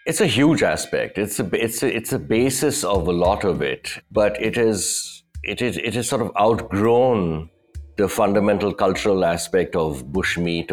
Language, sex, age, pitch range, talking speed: English, male, 60-79, 85-110 Hz, 185 wpm